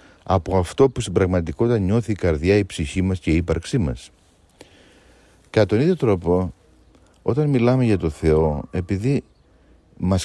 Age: 50-69